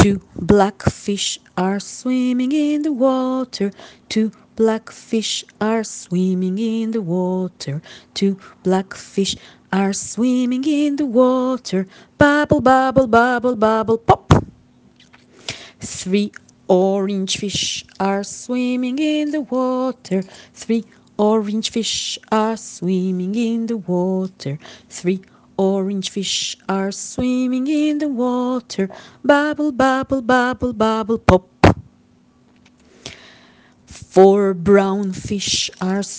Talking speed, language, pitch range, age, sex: 105 wpm, Hebrew, 195-255 Hz, 30-49, female